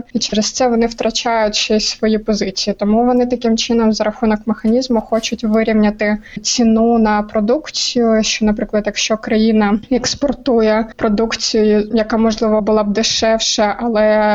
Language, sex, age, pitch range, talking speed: Ukrainian, female, 20-39, 210-230 Hz, 135 wpm